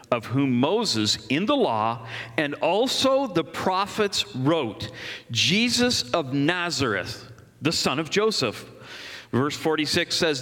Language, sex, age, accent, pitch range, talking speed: English, male, 50-69, American, 135-210 Hz, 120 wpm